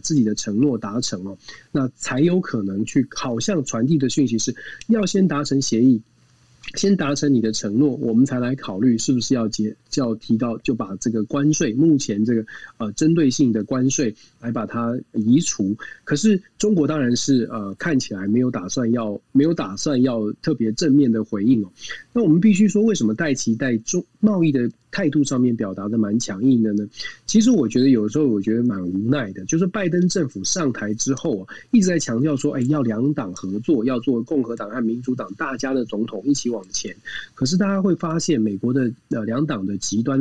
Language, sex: Chinese, male